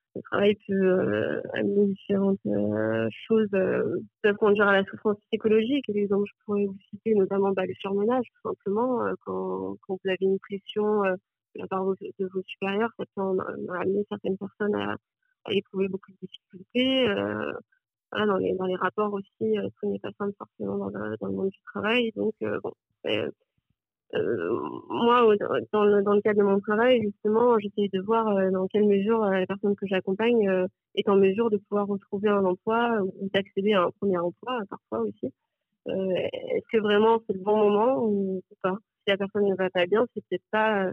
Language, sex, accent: French, female, French